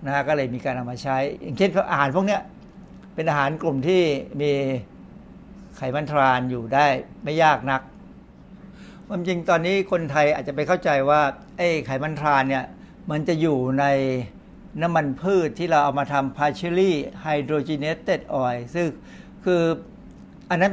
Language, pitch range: Thai, 140-180 Hz